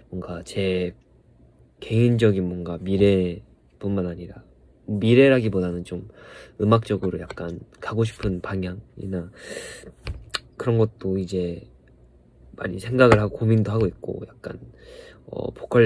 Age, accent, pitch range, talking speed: 20-39, Korean, 90-110 Hz, 95 wpm